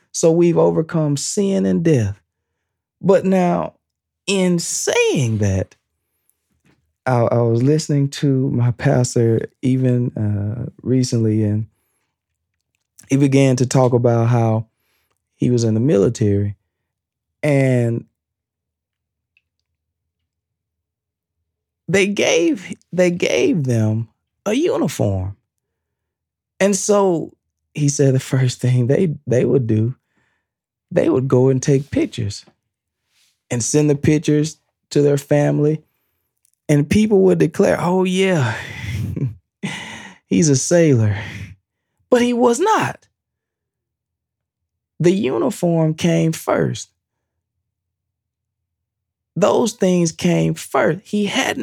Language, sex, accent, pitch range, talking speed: English, male, American, 100-160 Hz, 100 wpm